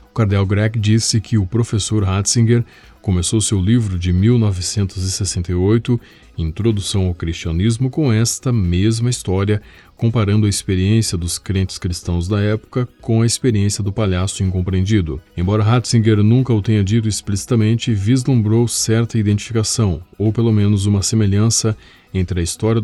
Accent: Brazilian